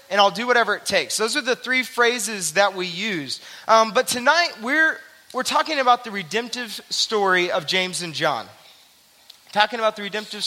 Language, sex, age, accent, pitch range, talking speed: English, male, 20-39, American, 175-240 Hz, 180 wpm